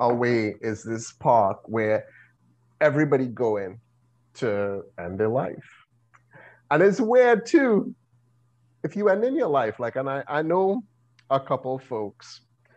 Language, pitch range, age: English, 100-125 Hz, 30-49